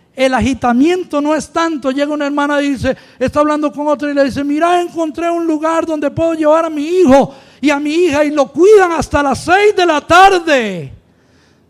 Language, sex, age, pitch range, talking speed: English, male, 50-69, 230-330 Hz, 205 wpm